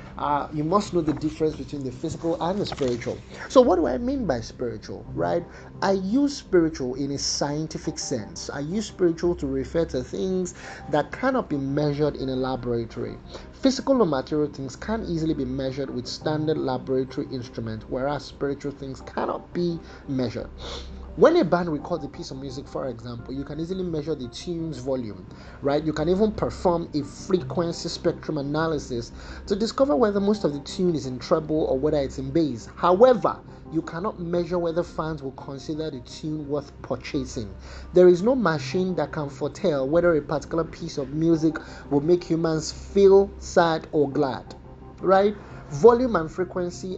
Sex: male